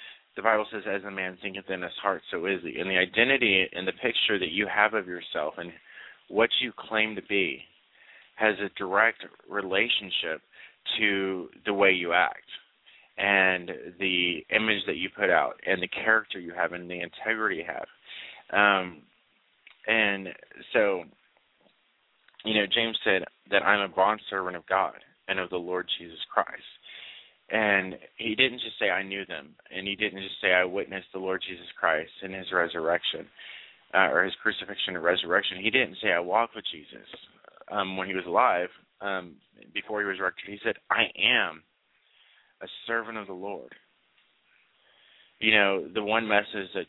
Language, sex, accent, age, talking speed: English, male, American, 30-49, 175 wpm